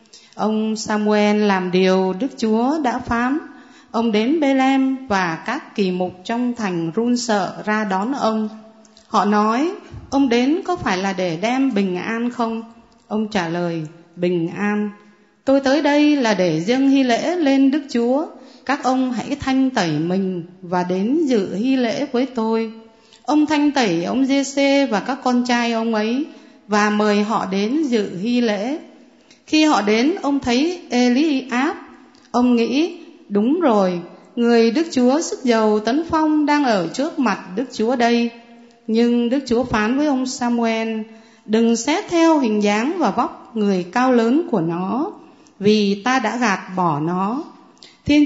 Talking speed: 165 wpm